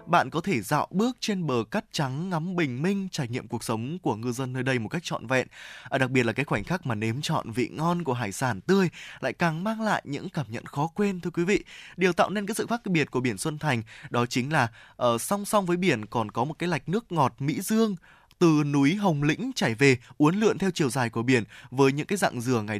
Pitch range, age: 125-185 Hz, 20-39